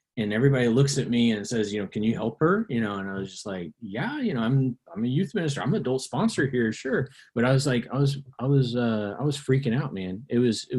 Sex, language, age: male, English, 30-49